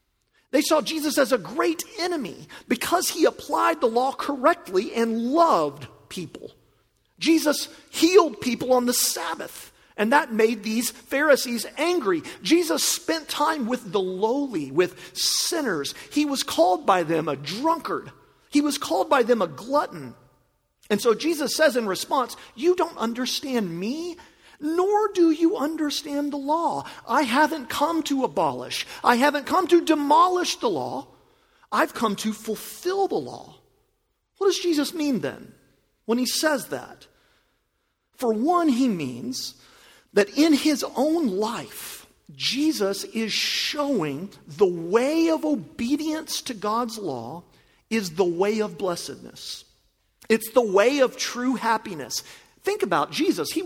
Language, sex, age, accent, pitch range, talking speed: English, male, 40-59, American, 225-325 Hz, 140 wpm